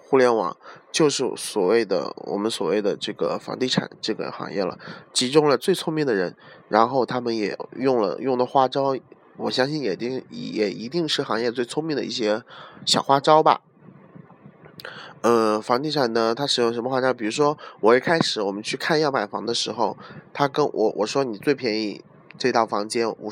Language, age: Chinese, 20-39